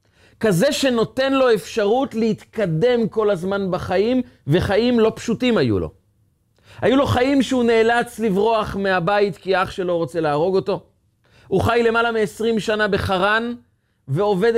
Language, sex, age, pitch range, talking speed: Hebrew, male, 30-49, 135-210 Hz, 135 wpm